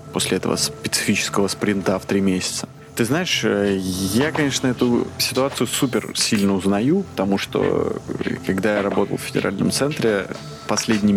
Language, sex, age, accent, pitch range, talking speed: Russian, male, 20-39, native, 100-120 Hz, 135 wpm